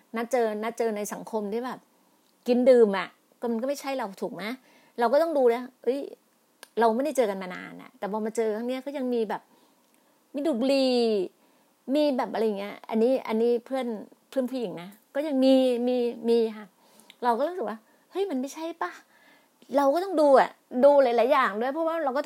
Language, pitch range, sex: Thai, 220-280 Hz, female